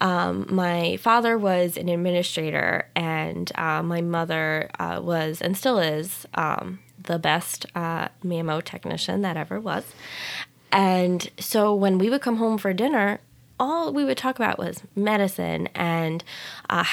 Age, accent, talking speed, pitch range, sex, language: 10-29, American, 150 wpm, 165-200 Hz, female, English